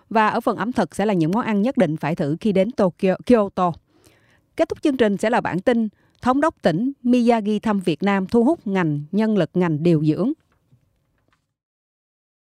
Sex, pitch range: female, 170-235 Hz